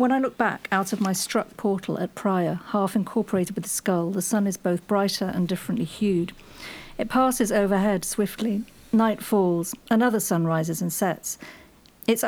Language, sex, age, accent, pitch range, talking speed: English, female, 50-69, British, 180-215 Hz, 170 wpm